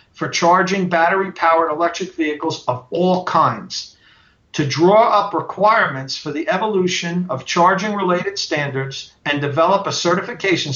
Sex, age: male, 50-69